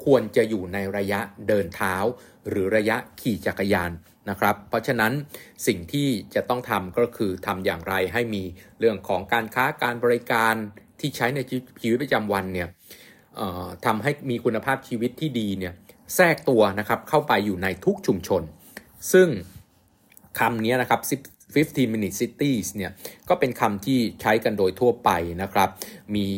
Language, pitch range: Thai, 95-125 Hz